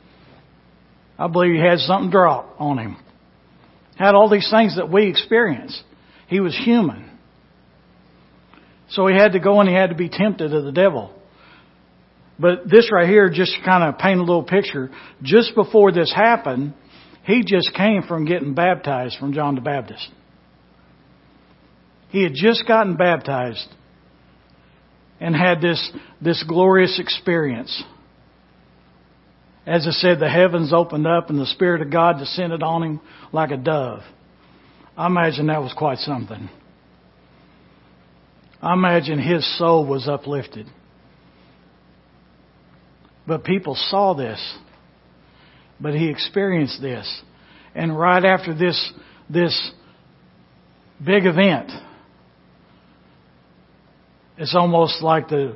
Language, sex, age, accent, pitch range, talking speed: English, male, 60-79, American, 110-180 Hz, 125 wpm